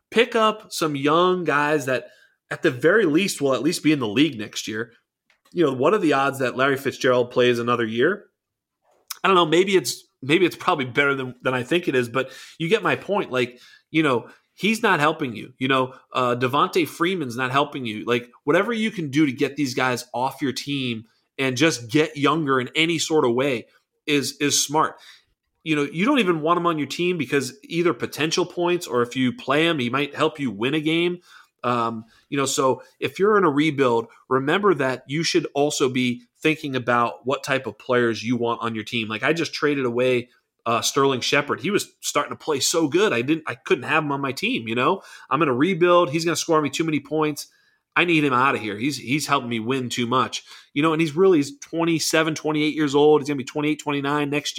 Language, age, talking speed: English, 30-49, 230 wpm